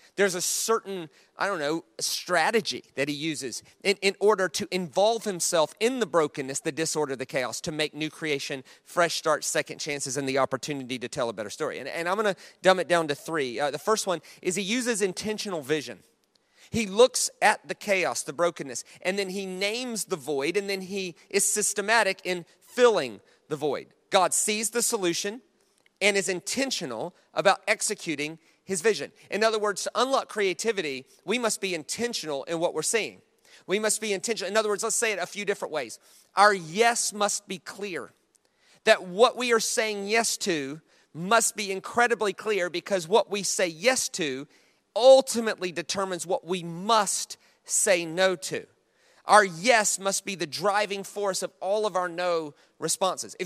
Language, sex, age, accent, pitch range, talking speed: English, male, 30-49, American, 170-215 Hz, 180 wpm